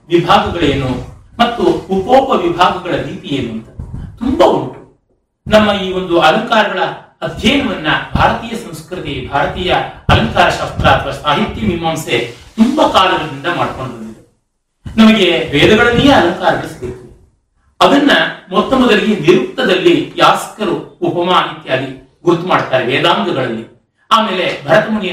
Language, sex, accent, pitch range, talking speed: Kannada, male, native, 135-190 Hz, 95 wpm